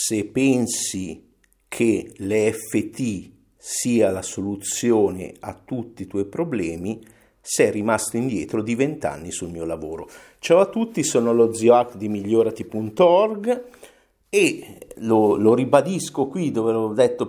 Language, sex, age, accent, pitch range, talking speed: Italian, male, 50-69, native, 100-135 Hz, 125 wpm